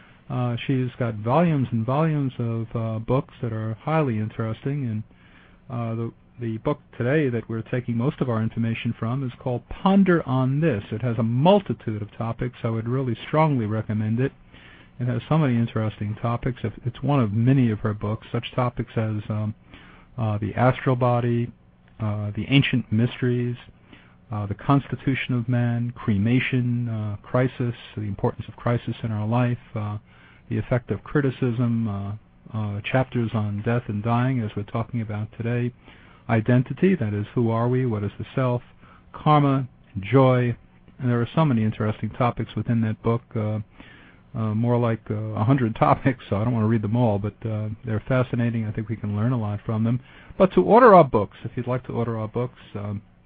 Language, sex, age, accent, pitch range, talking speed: English, male, 50-69, American, 110-125 Hz, 185 wpm